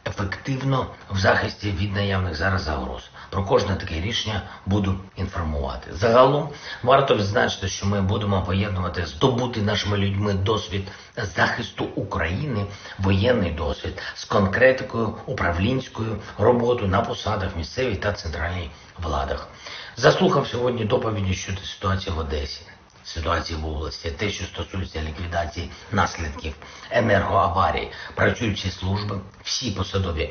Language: English